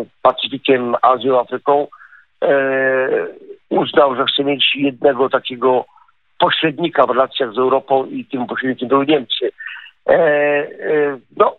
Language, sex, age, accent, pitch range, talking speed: Polish, male, 50-69, native, 130-150 Hz, 105 wpm